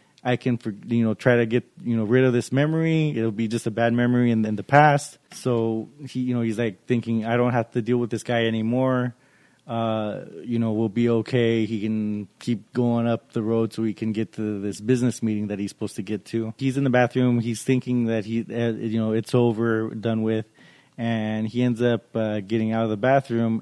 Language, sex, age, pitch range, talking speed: English, male, 20-39, 110-125 Hz, 230 wpm